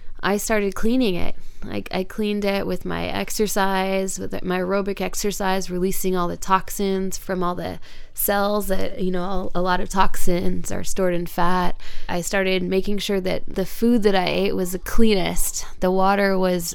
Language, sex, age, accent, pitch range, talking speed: English, female, 20-39, American, 175-200 Hz, 180 wpm